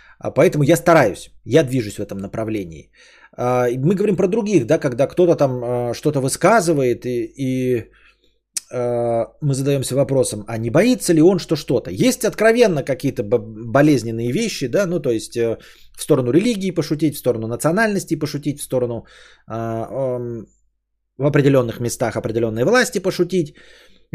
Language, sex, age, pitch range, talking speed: Bulgarian, male, 20-39, 125-185 Hz, 140 wpm